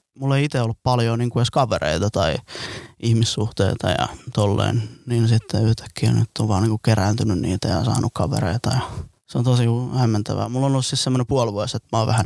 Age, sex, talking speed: 20-39, male, 195 wpm